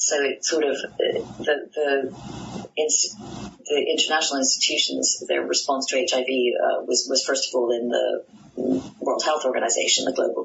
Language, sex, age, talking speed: English, female, 30-49, 150 wpm